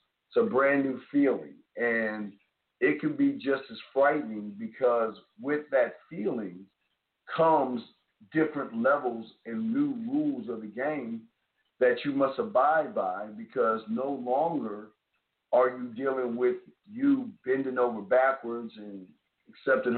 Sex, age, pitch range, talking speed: male, 50-69, 115-155 Hz, 125 wpm